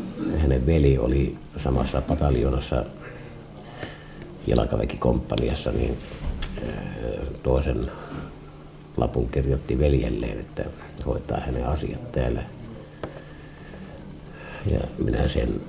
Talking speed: 75 wpm